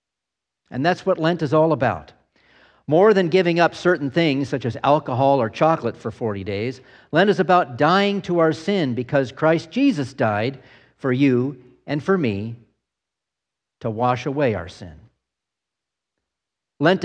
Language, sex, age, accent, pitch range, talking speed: English, male, 50-69, American, 115-155 Hz, 150 wpm